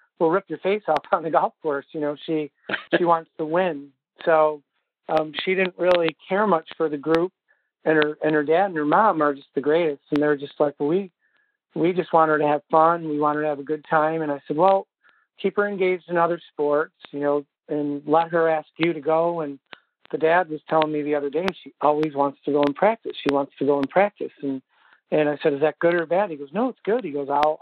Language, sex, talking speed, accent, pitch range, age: English, male, 255 wpm, American, 145-170 Hz, 50-69